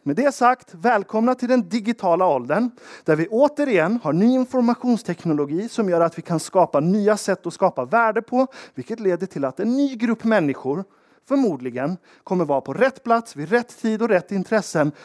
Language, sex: Swedish, male